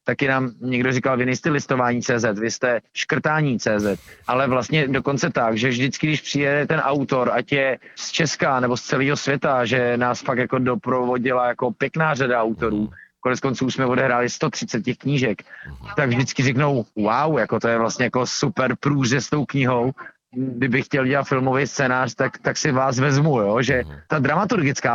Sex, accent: male, native